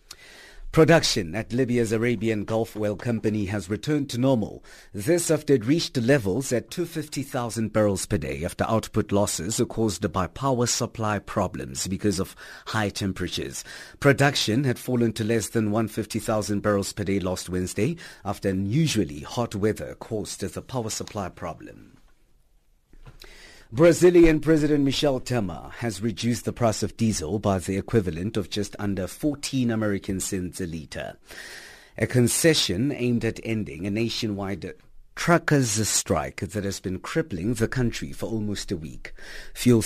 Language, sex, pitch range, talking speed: English, male, 100-130 Hz, 145 wpm